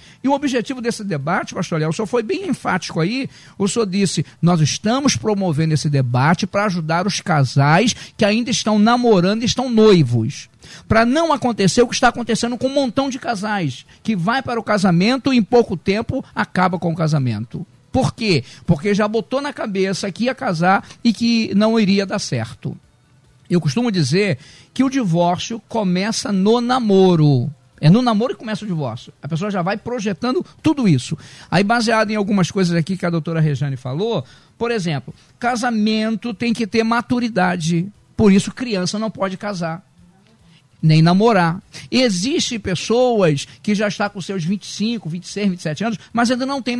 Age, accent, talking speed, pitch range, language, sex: 50-69, Brazilian, 175 wpm, 165-235 Hz, Portuguese, male